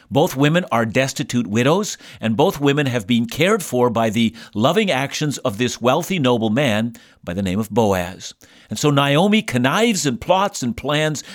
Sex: male